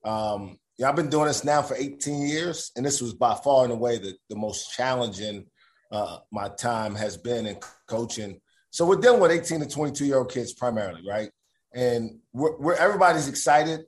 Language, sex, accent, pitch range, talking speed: English, male, American, 125-155 Hz, 195 wpm